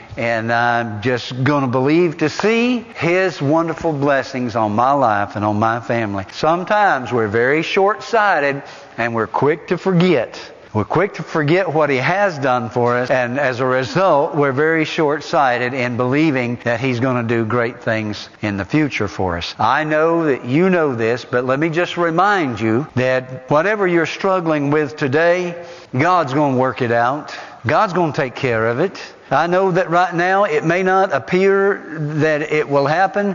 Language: English